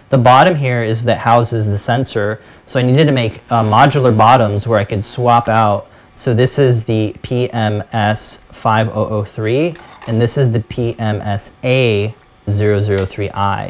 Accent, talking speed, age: American, 135 wpm, 30-49